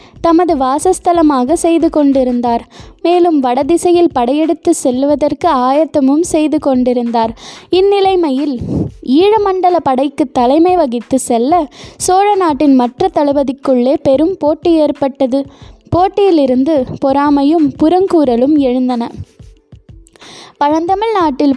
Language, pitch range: Tamil, 270-340 Hz